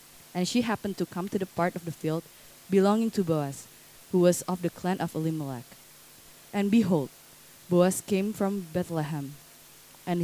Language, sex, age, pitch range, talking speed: English, female, 20-39, 165-195 Hz, 165 wpm